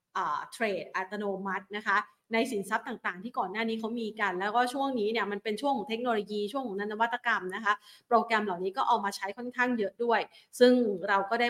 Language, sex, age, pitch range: Thai, female, 30-49, 195-240 Hz